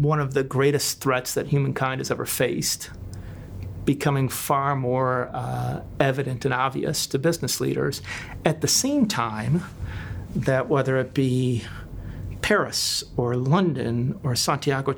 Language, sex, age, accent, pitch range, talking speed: English, male, 40-59, American, 100-150 Hz, 130 wpm